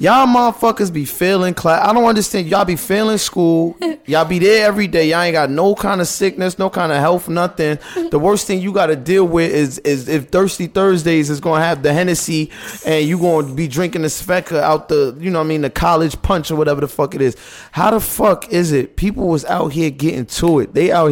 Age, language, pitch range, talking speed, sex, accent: 20-39, English, 150-185 Hz, 235 wpm, male, American